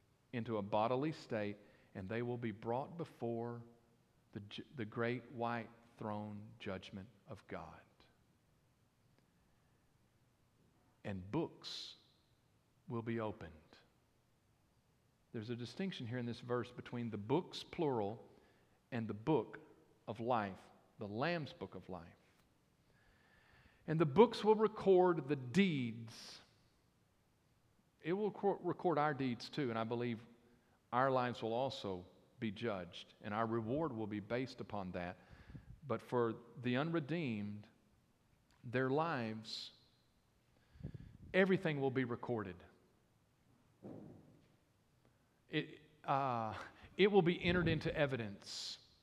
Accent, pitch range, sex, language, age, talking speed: American, 110-135 Hz, male, English, 50-69, 110 wpm